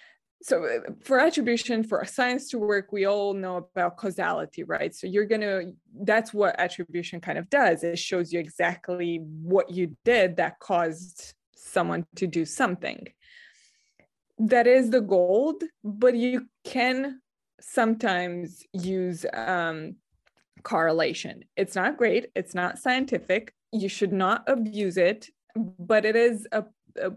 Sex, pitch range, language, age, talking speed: female, 175-225 Hz, English, 20-39, 140 wpm